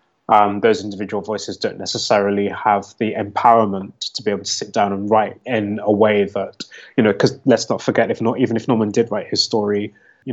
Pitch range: 100-115 Hz